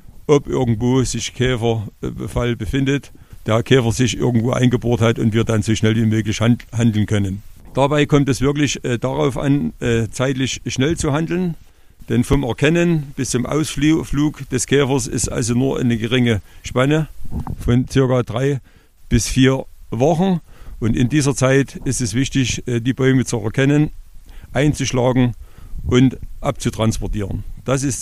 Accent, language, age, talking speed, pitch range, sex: German, German, 50-69, 140 wpm, 115-135 Hz, male